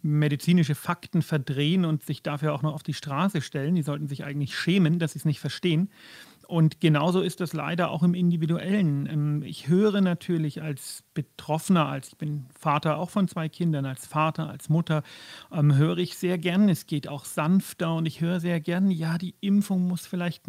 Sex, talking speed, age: male, 195 wpm, 40-59